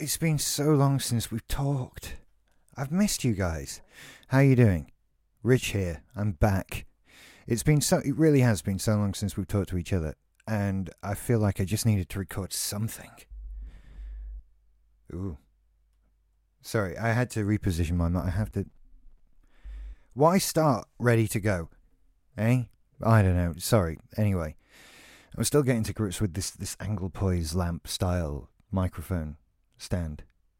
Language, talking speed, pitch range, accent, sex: English, 155 wpm, 85-115 Hz, British, male